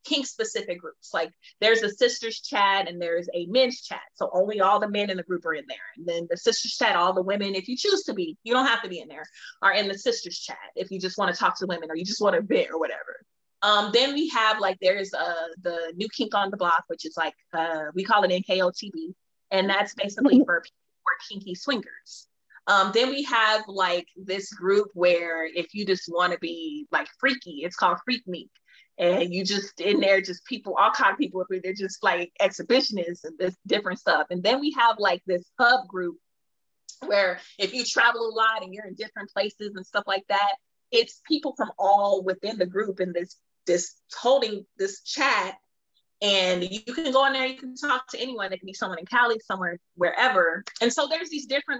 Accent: American